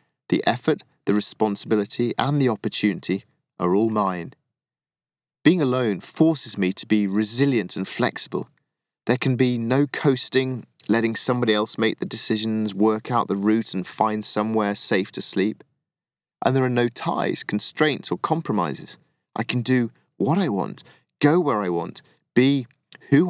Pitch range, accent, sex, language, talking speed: 105-125 Hz, British, male, English, 155 wpm